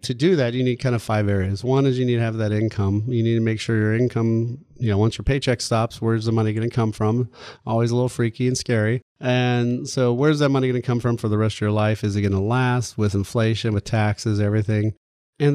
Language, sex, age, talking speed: English, male, 30-49, 255 wpm